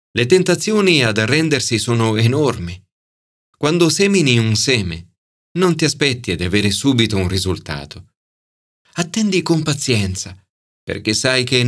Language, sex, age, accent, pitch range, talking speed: Italian, male, 40-59, native, 100-150 Hz, 130 wpm